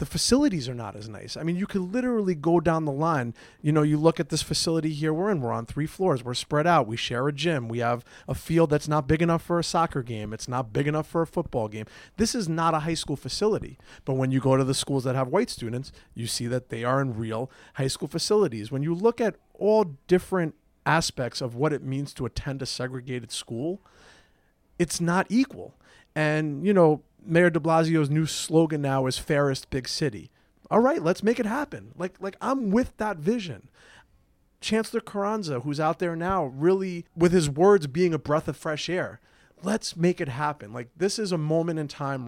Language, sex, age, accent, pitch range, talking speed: English, male, 30-49, American, 135-175 Hz, 220 wpm